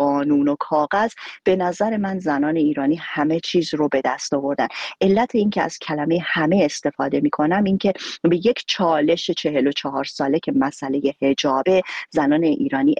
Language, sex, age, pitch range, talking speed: Persian, female, 30-49, 150-190 Hz, 160 wpm